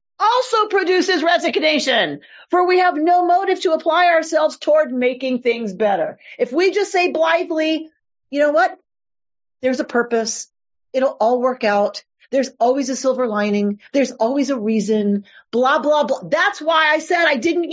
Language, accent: English, American